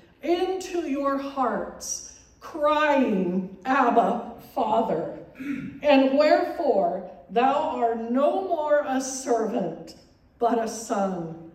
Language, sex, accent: English, female, American